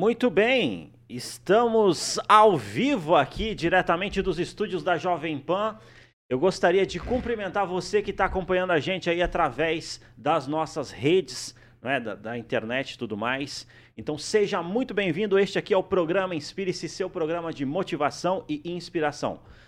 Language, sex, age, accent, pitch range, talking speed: Portuguese, male, 30-49, Brazilian, 135-190 Hz, 155 wpm